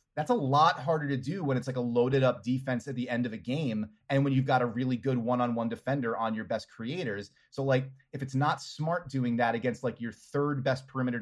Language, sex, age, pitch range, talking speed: English, male, 30-49, 125-145 Hz, 245 wpm